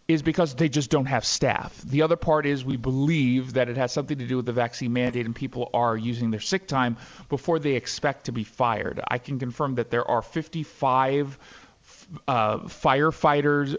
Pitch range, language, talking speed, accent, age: 120-155 Hz, English, 195 wpm, American, 40-59